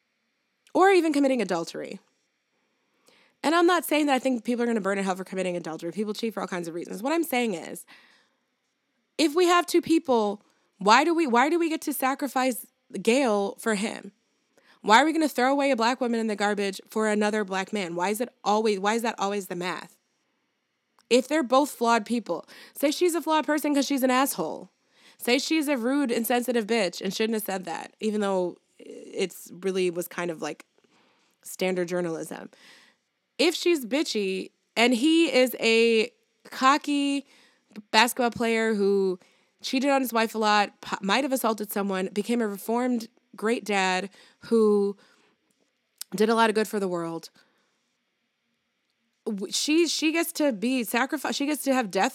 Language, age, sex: English, 20-39, female